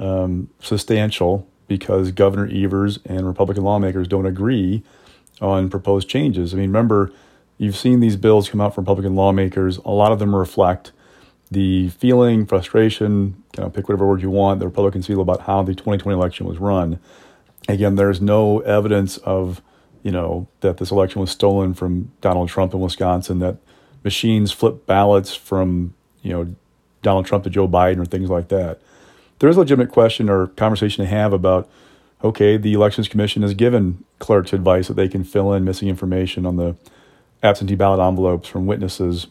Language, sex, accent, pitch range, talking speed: English, male, American, 95-105 Hz, 175 wpm